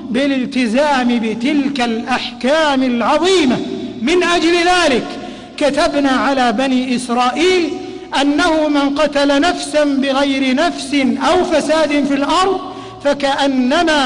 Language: Arabic